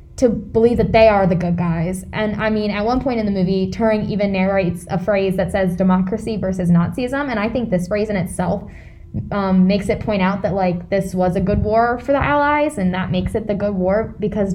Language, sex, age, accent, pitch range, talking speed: English, female, 10-29, American, 185-225 Hz, 235 wpm